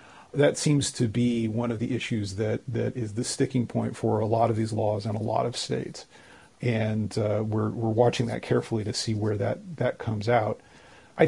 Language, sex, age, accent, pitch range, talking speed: English, male, 40-59, American, 120-140 Hz, 215 wpm